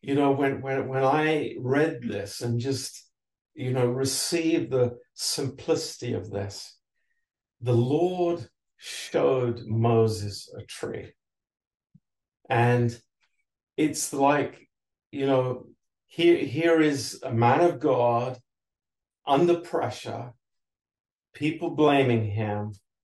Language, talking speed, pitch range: Romanian, 105 wpm, 115-150 Hz